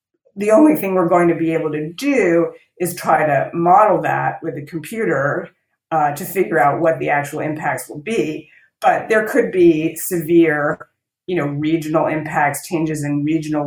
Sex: female